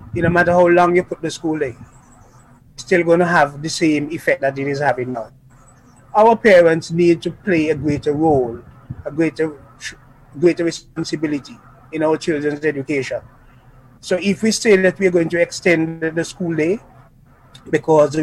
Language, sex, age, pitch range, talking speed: English, male, 30-49, 140-185 Hz, 170 wpm